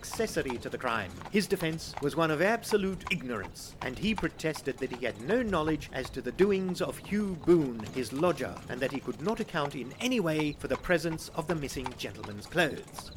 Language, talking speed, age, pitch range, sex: English, 205 wpm, 50-69, 135-190 Hz, male